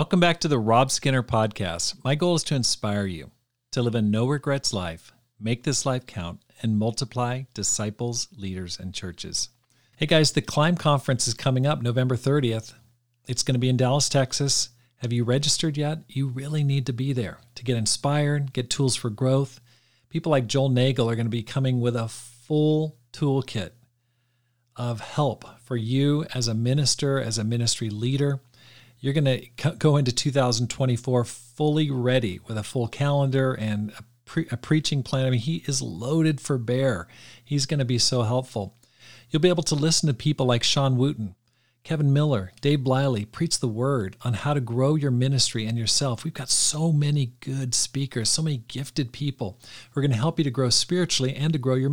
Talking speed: 190 wpm